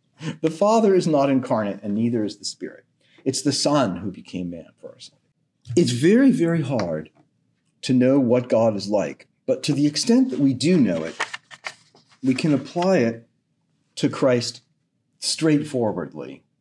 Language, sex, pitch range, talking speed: English, male, 120-190 Hz, 160 wpm